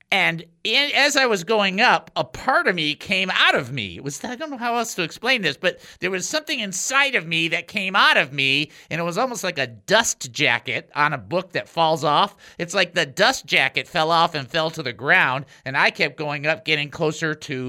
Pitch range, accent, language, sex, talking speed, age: 150-210 Hz, American, English, male, 235 wpm, 50-69